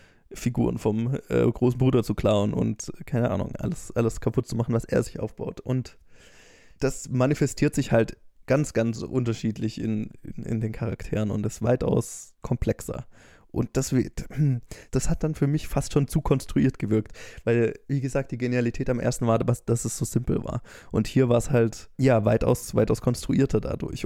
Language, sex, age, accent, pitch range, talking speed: German, male, 20-39, German, 115-130 Hz, 175 wpm